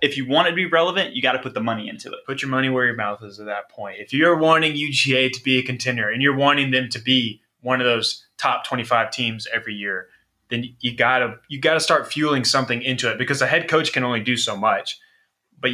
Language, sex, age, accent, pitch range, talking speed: English, male, 20-39, American, 120-145 Hz, 260 wpm